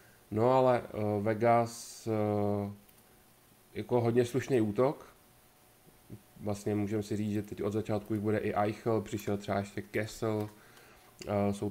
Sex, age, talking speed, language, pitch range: male, 20-39, 125 wpm, Czech, 100-120 Hz